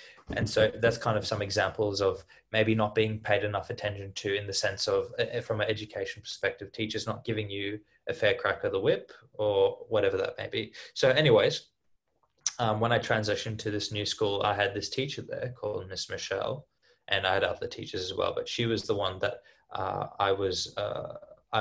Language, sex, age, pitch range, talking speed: English, male, 20-39, 105-140 Hz, 205 wpm